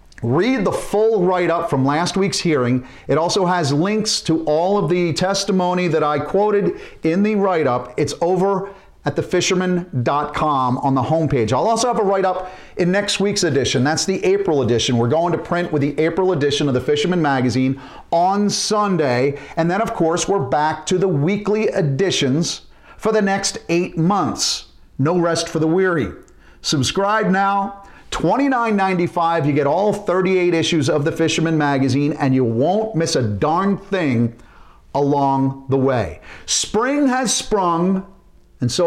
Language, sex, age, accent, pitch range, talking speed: English, male, 40-59, American, 145-195 Hz, 160 wpm